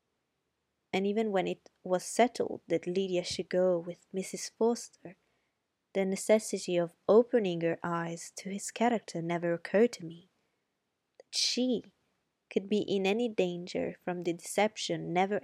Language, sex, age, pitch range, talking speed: Italian, female, 20-39, 180-215 Hz, 145 wpm